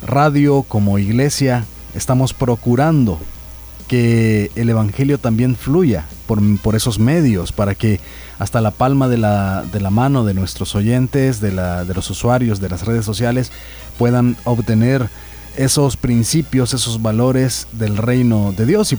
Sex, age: male, 30-49